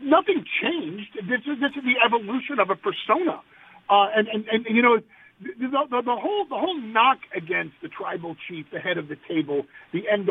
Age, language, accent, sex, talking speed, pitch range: 50-69, English, American, male, 205 wpm, 175-285 Hz